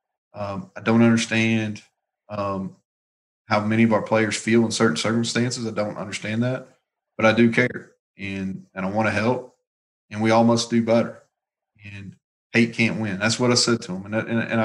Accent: American